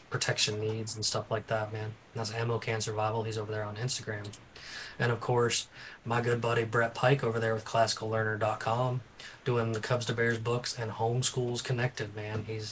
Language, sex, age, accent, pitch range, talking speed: English, male, 20-39, American, 110-130 Hz, 190 wpm